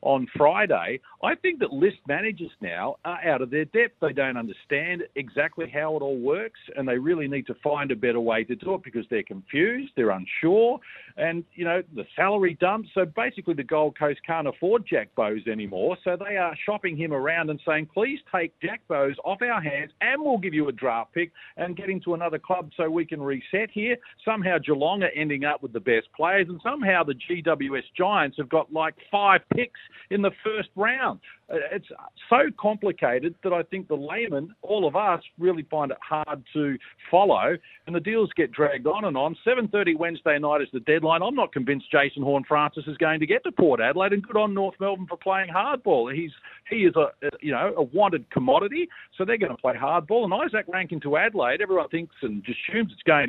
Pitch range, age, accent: 145-200 Hz, 50-69, Australian